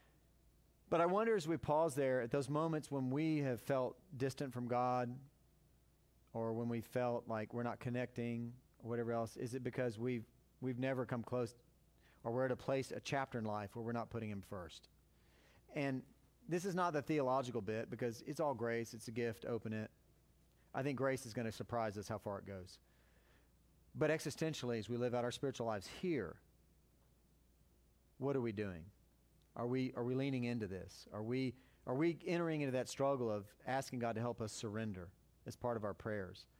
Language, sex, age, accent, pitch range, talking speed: English, male, 40-59, American, 110-135 Hz, 200 wpm